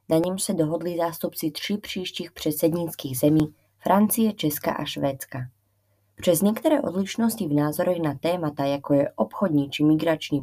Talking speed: 145 wpm